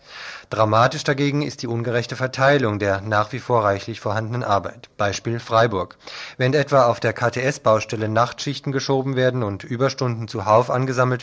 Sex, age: male, 20-39